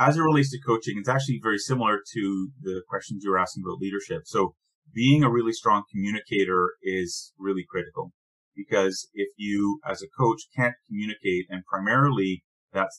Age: 30-49